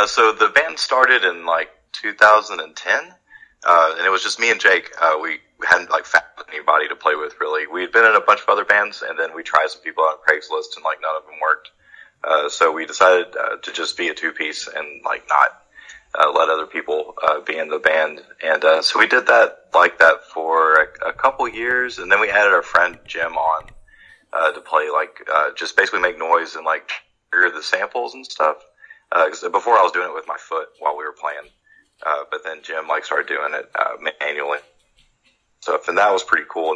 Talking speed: 225 wpm